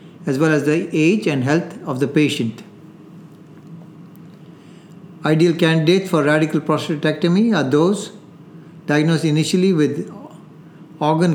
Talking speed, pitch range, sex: 110 wpm, 150-175 Hz, male